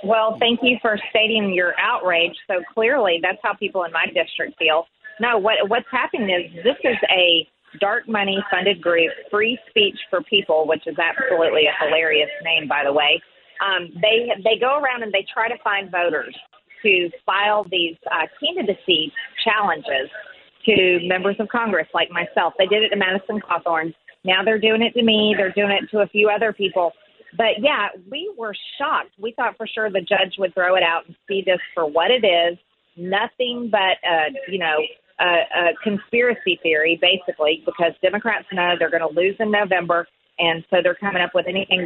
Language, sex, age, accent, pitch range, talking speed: English, female, 40-59, American, 175-220 Hz, 190 wpm